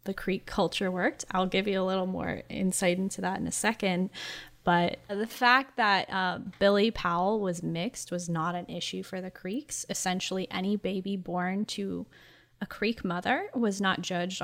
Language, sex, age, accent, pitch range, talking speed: English, female, 10-29, American, 175-210 Hz, 180 wpm